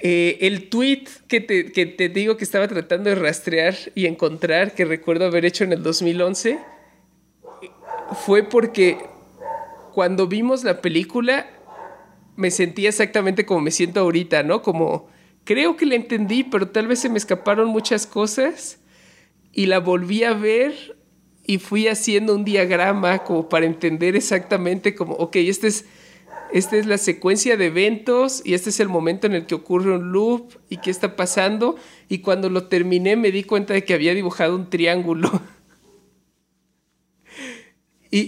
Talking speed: 160 wpm